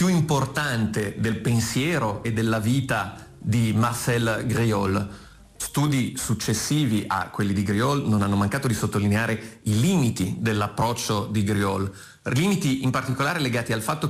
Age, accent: 40-59, native